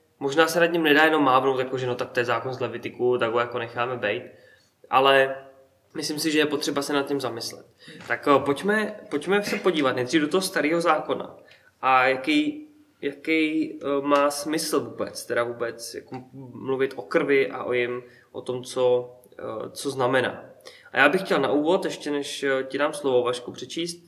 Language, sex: Czech, male